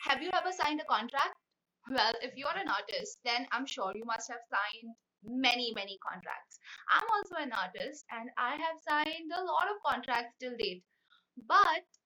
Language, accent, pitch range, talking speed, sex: Hindi, native, 245-330 Hz, 185 wpm, female